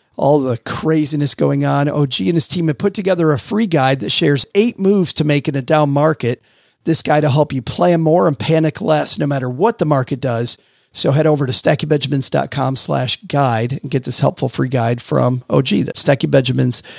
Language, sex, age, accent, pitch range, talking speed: English, male, 40-59, American, 130-155 Hz, 200 wpm